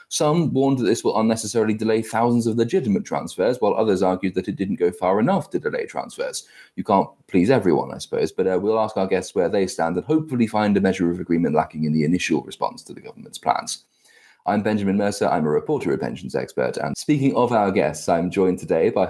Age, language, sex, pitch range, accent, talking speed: 30-49, English, male, 90-125 Hz, British, 225 wpm